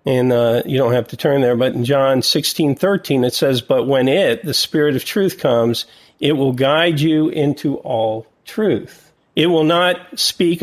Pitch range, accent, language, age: 120-150 Hz, American, English, 50-69